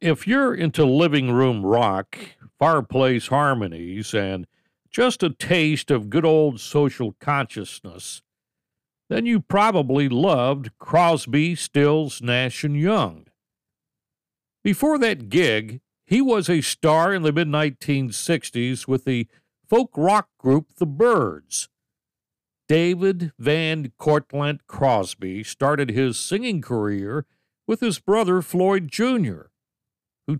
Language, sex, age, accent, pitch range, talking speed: English, male, 60-79, American, 125-180 Hz, 110 wpm